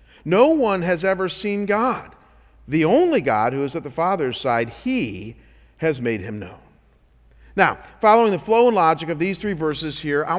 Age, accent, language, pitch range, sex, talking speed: 50-69, American, English, 160-215 Hz, male, 185 wpm